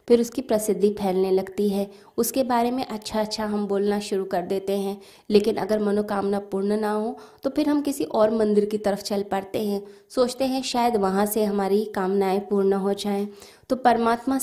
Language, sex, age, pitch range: Hindi, female, 20-39, 200-235 Hz